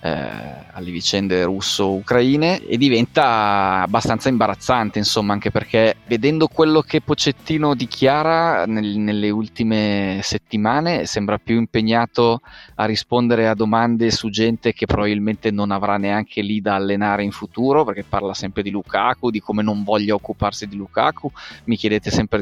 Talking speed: 145 wpm